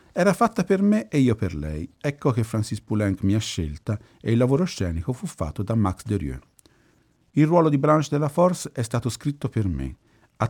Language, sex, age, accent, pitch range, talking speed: Italian, male, 50-69, native, 100-140 Hz, 210 wpm